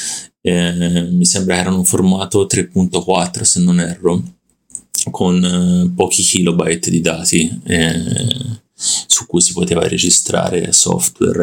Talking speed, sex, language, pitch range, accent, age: 125 wpm, male, Italian, 85-100 Hz, native, 30-49